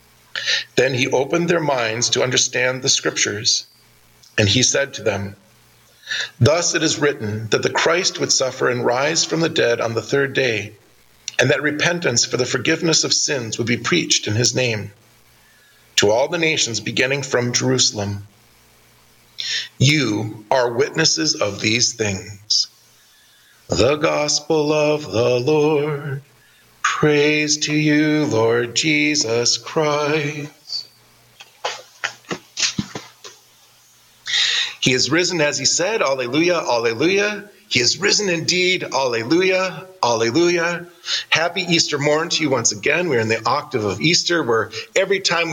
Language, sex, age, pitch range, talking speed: English, male, 40-59, 115-155 Hz, 130 wpm